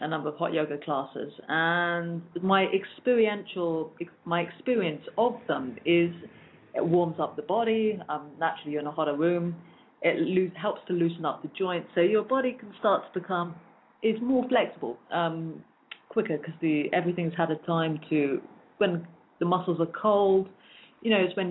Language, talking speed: English, 175 wpm